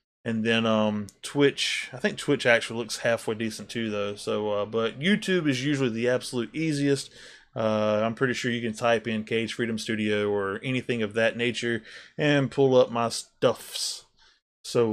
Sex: male